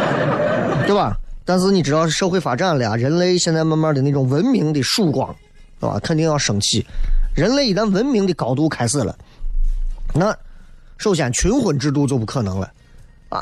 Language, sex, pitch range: Chinese, male, 130-185 Hz